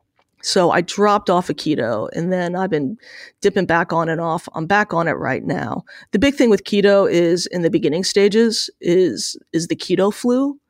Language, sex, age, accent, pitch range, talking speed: English, female, 30-49, American, 165-205 Hz, 210 wpm